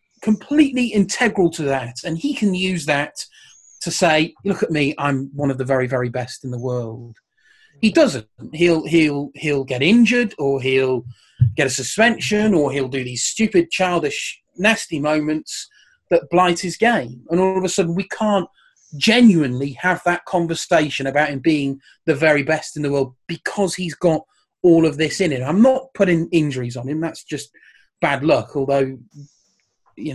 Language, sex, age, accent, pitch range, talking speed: English, male, 30-49, British, 135-175 Hz, 175 wpm